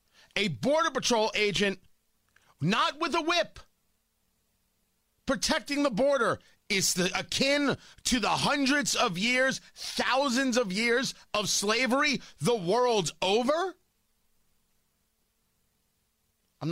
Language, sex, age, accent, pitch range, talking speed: English, male, 40-59, American, 155-240 Hz, 95 wpm